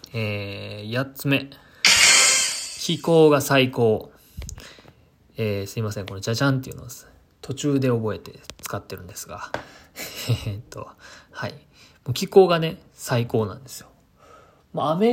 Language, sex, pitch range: Japanese, male, 110-145 Hz